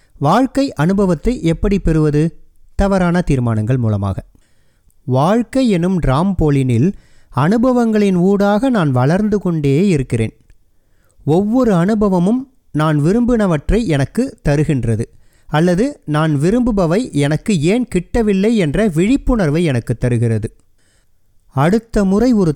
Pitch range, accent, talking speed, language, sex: 130-205 Hz, native, 95 wpm, Tamil, male